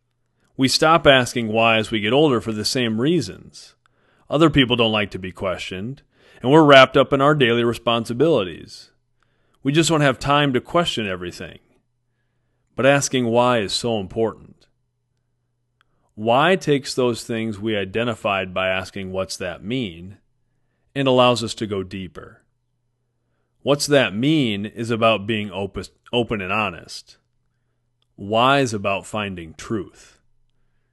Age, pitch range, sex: 40-59, 110-130 Hz, male